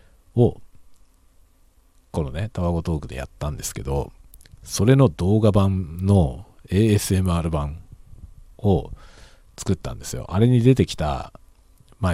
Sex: male